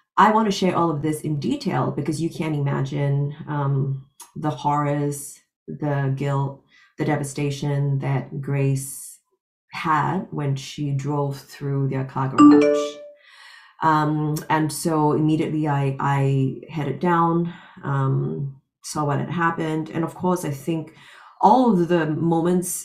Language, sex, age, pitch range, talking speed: English, female, 30-49, 145-170 Hz, 135 wpm